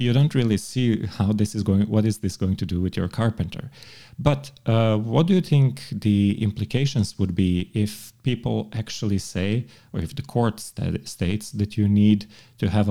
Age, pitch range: 40-59, 100-115 Hz